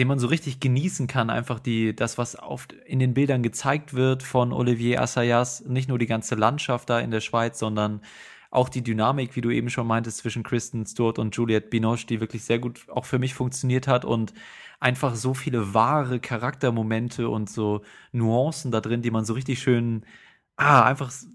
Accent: German